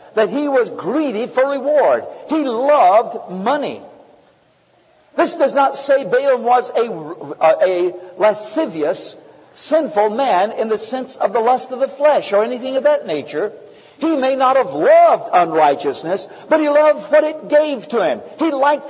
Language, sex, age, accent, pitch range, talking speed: English, male, 60-79, American, 185-300 Hz, 160 wpm